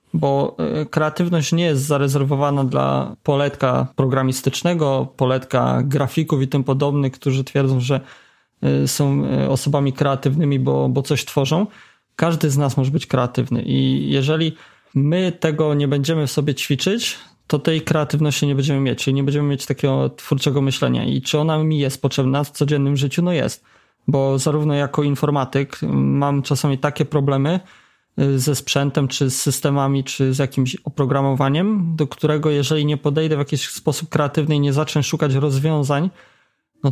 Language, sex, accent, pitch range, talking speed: Polish, male, native, 135-155 Hz, 155 wpm